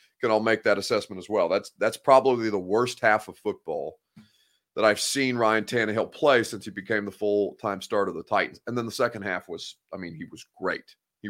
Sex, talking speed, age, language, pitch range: male, 225 wpm, 30-49, English, 105-135 Hz